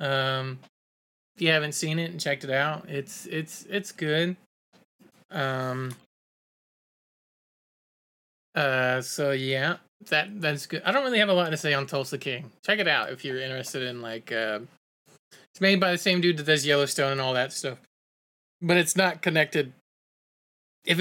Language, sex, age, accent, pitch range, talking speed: English, male, 20-39, American, 135-180 Hz, 170 wpm